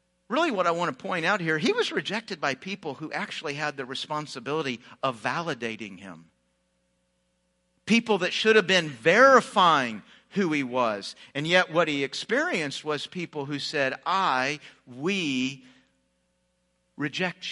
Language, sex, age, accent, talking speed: English, male, 50-69, American, 145 wpm